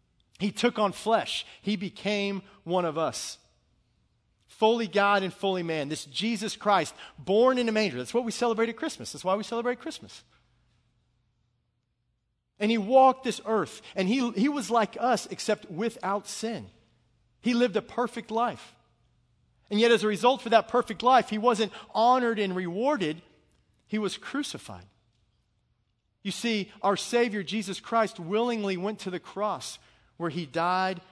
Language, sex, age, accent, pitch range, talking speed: English, male, 40-59, American, 145-215 Hz, 160 wpm